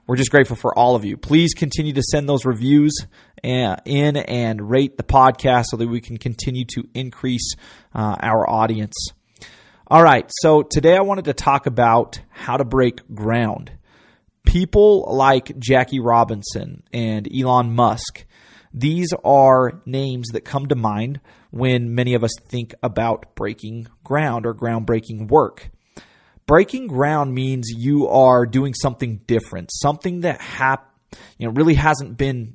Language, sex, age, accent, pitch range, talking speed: English, male, 30-49, American, 120-150 Hz, 150 wpm